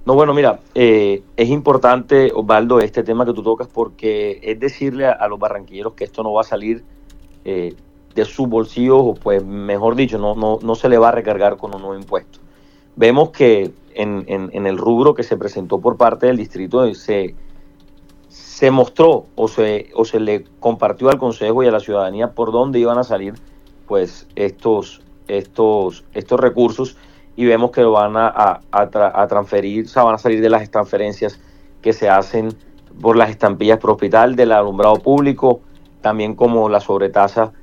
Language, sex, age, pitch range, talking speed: Spanish, male, 40-59, 105-125 Hz, 185 wpm